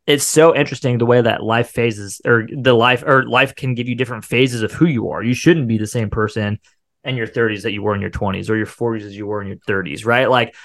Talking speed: 270 wpm